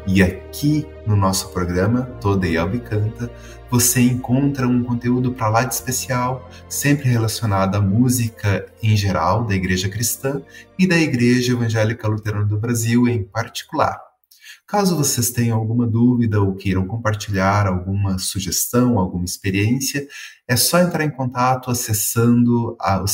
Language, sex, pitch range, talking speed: Portuguese, male, 100-125 Hz, 135 wpm